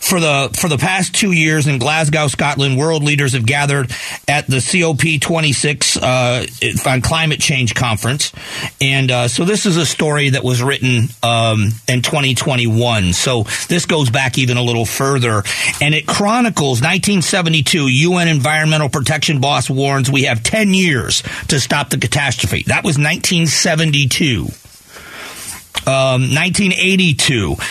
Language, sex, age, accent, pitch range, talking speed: English, male, 40-59, American, 130-170 Hz, 140 wpm